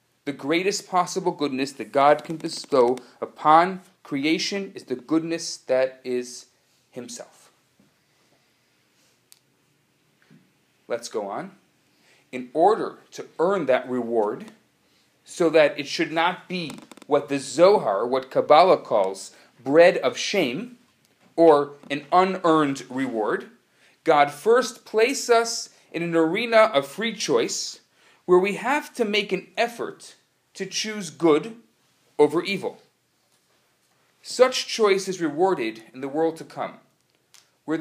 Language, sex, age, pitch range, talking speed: English, male, 40-59, 140-195 Hz, 120 wpm